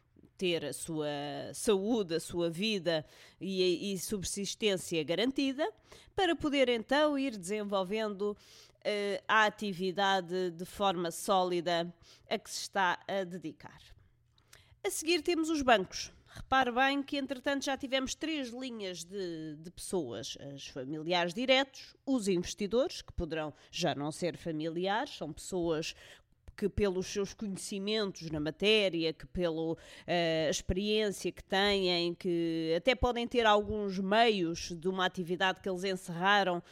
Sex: female